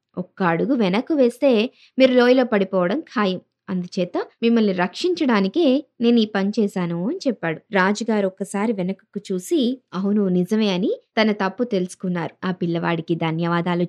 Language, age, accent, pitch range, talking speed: Telugu, 20-39, native, 185-240 Hz, 130 wpm